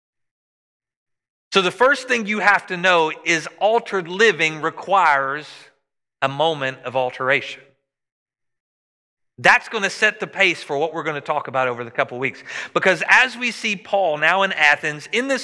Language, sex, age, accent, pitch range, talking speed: English, male, 40-59, American, 155-215 Hz, 165 wpm